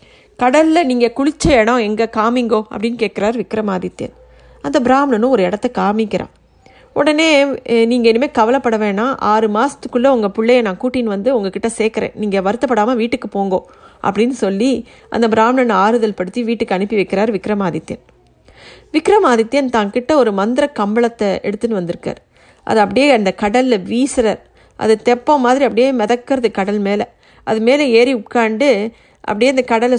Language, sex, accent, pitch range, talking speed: Tamil, female, native, 215-275 Hz, 135 wpm